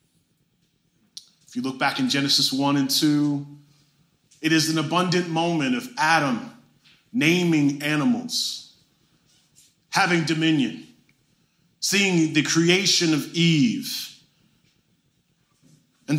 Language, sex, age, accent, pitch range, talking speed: English, male, 30-49, American, 155-215 Hz, 95 wpm